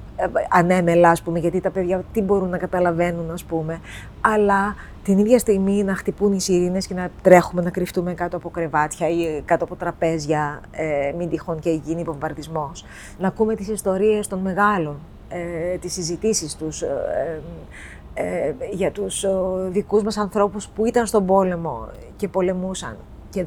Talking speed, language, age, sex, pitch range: 150 wpm, Greek, 20-39, female, 175-205 Hz